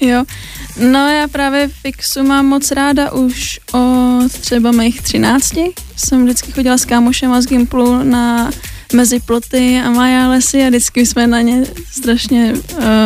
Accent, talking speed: native, 145 wpm